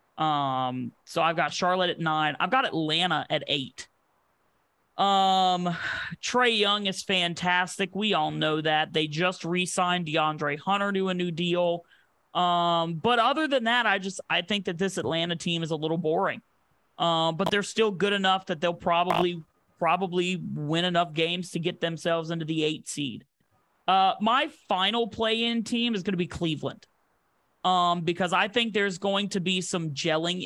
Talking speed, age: 175 wpm, 30-49